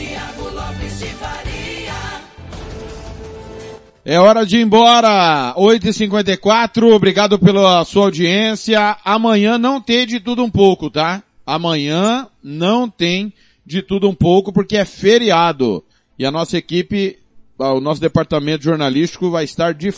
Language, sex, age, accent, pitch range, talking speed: Portuguese, male, 40-59, Brazilian, 170-220 Hz, 115 wpm